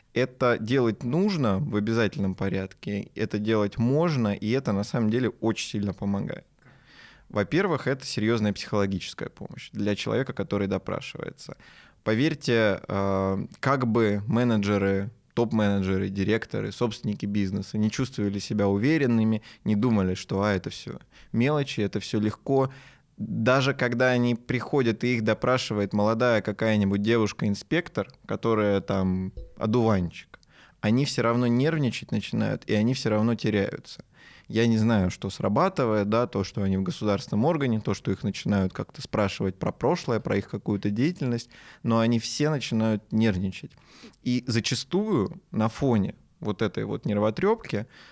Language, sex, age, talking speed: Russian, male, 20-39, 135 wpm